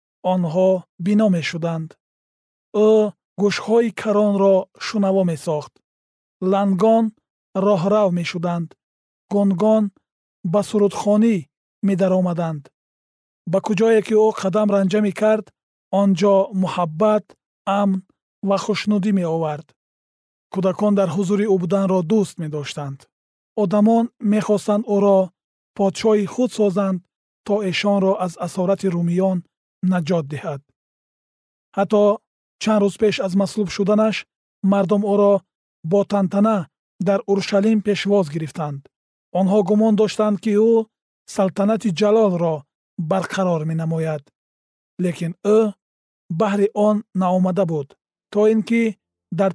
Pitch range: 180-210 Hz